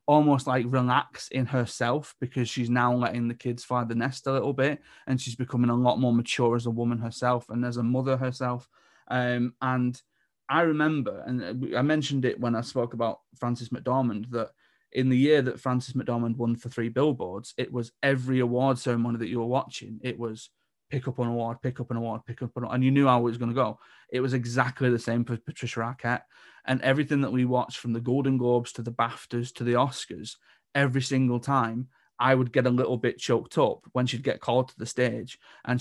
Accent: British